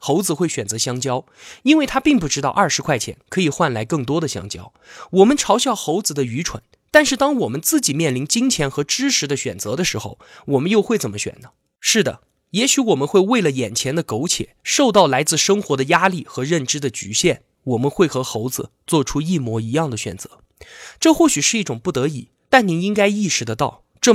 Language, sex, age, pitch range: Chinese, male, 20-39, 130-215 Hz